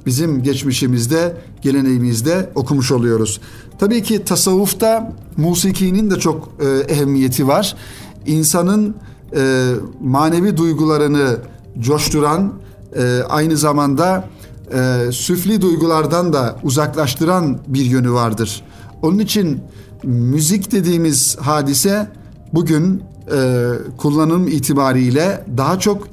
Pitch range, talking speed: 125-165 Hz, 95 wpm